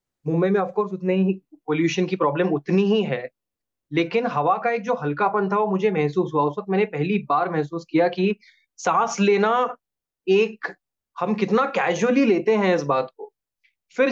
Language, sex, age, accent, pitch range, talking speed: Hindi, male, 20-39, native, 150-205 Hz, 180 wpm